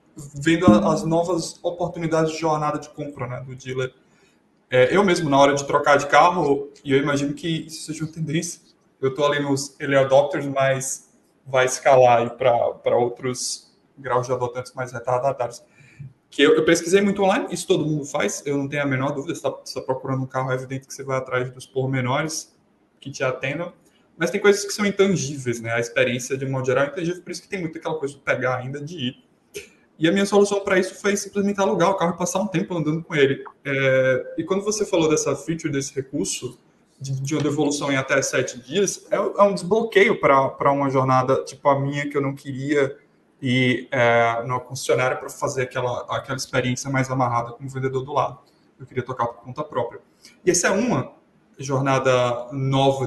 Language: Portuguese